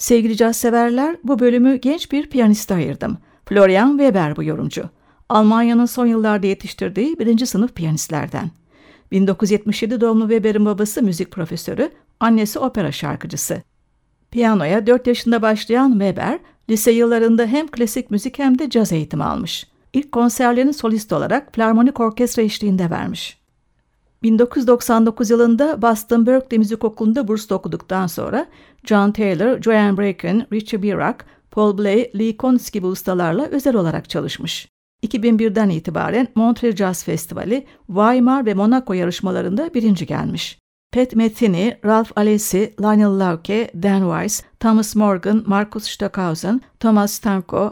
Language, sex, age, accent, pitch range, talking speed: Turkish, female, 60-79, native, 195-240 Hz, 125 wpm